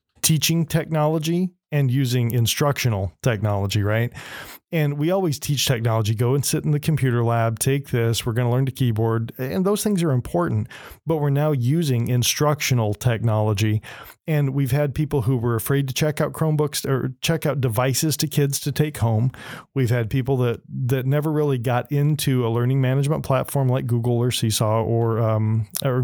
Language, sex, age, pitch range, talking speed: English, male, 40-59, 115-145 Hz, 180 wpm